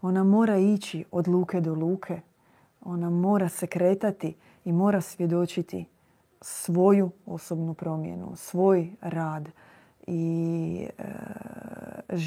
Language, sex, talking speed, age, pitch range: Croatian, female, 105 wpm, 30-49, 165-200 Hz